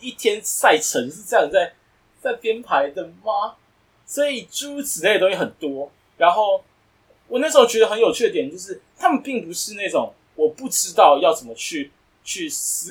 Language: Chinese